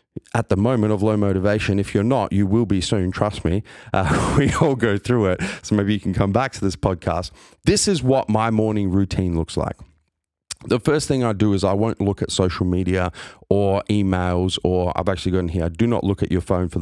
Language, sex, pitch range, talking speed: English, male, 90-105 Hz, 230 wpm